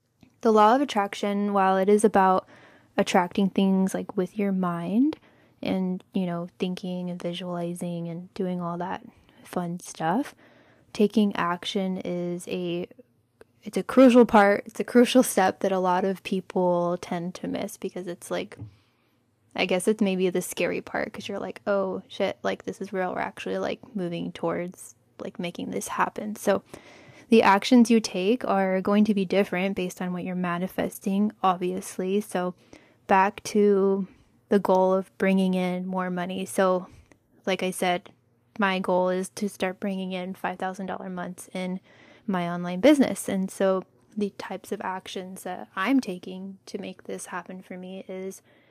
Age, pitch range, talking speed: 10-29, 180-205 Hz, 165 wpm